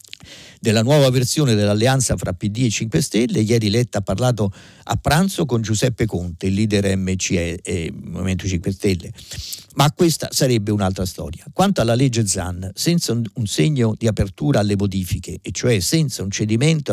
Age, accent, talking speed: 50-69, native, 160 wpm